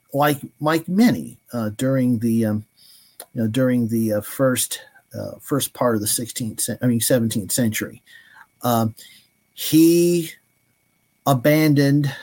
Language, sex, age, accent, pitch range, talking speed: English, male, 50-69, American, 120-140 Hz, 130 wpm